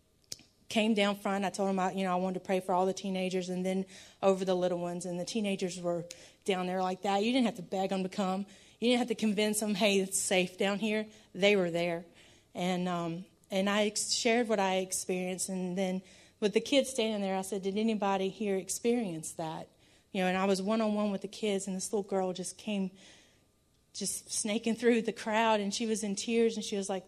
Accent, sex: American, female